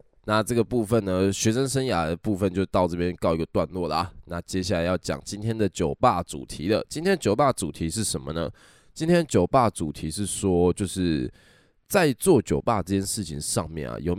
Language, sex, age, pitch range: Chinese, male, 10-29, 85-110 Hz